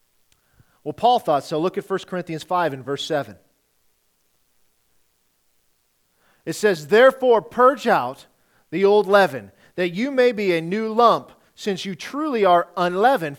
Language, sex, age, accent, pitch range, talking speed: English, male, 40-59, American, 175-220 Hz, 145 wpm